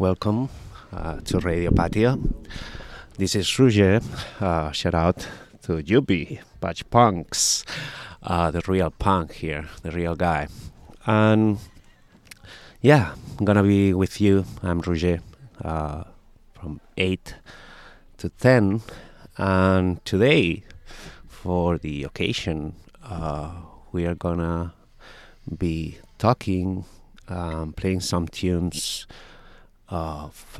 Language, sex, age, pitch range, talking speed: Italian, male, 30-49, 85-100 Hz, 110 wpm